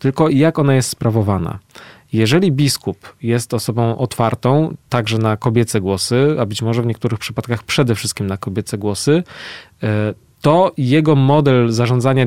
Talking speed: 140 wpm